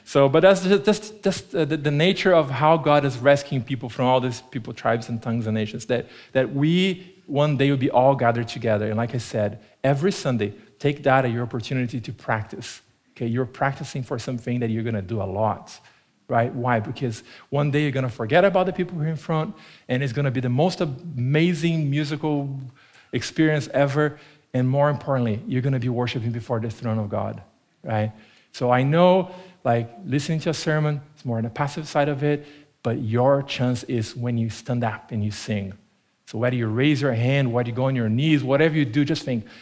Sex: male